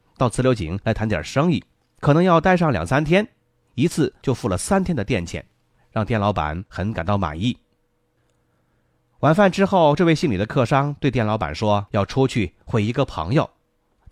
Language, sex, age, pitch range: Chinese, male, 30-49, 105-150 Hz